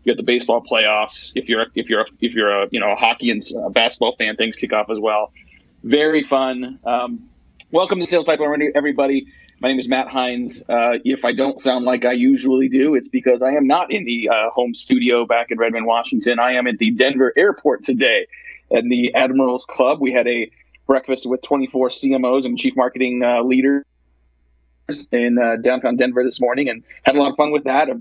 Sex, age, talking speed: male, 30-49, 210 wpm